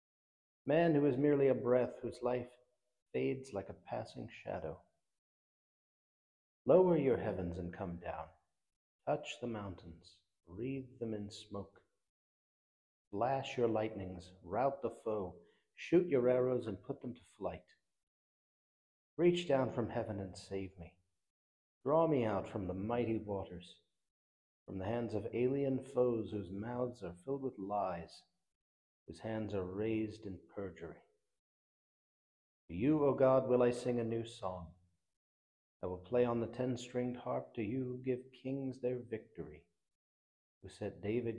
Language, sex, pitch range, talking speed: English, male, 90-125 Hz, 145 wpm